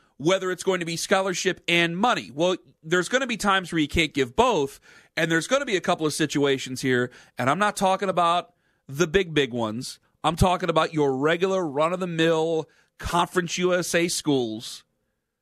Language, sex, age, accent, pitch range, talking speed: English, male, 40-59, American, 145-200 Hz, 185 wpm